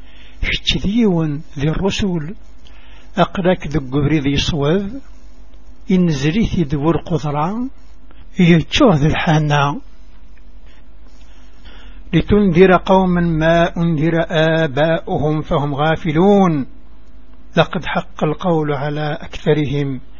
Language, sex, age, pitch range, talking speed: Arabic, male, 60-79, 145-175 Hz, 75 wpm